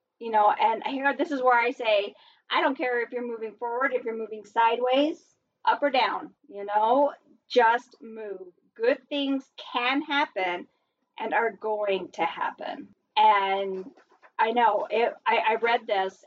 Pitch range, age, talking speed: 205-290 Hz, 40-59, 160 wpm